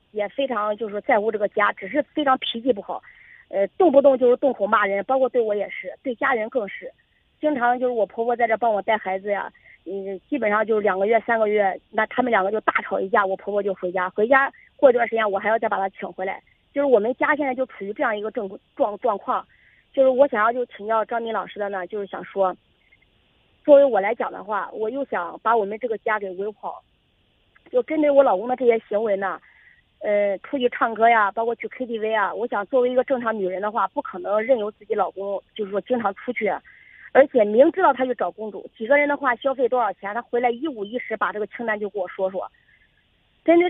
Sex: female